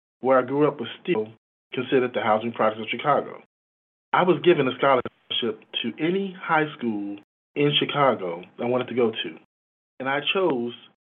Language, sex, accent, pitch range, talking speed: English, male, American, 115-140 Hz, 170 wpm